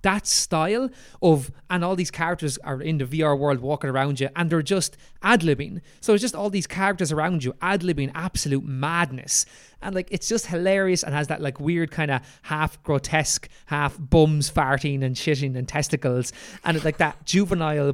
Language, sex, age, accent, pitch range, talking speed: English, male, 20-39, Irish, 130-170 Hz, 185 wpm